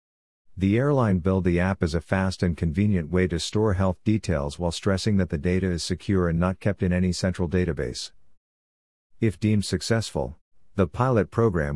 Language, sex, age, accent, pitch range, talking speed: English, male, 50-69, American, 85-100 Hz, 180 wpm